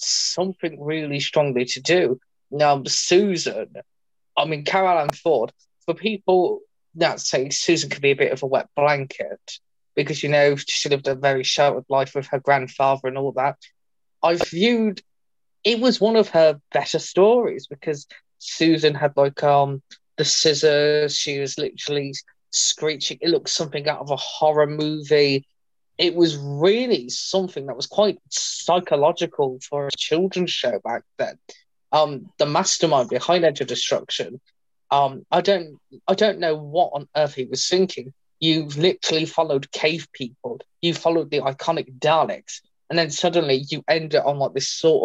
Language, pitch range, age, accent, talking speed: English, 140-170 Hz, 20-39, British, 165 wpm